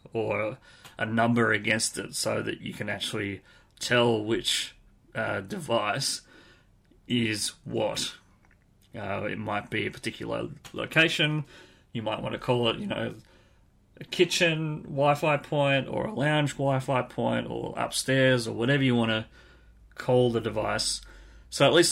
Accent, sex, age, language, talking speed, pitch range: Australian, male, 30-49, English, 145 wpm, 110-130 Hz